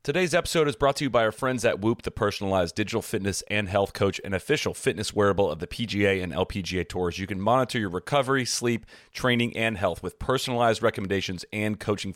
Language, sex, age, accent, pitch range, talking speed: English, male, 30-49, American, 95-115 Hz, 205 wpm